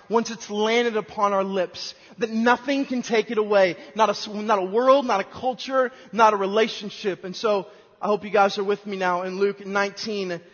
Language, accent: English, American